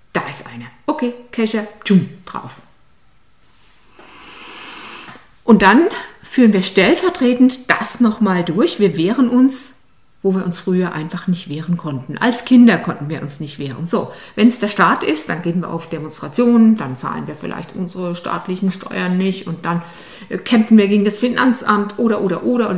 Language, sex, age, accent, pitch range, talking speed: German, female, 50-69, German, 165-210 Hz, 165 wpm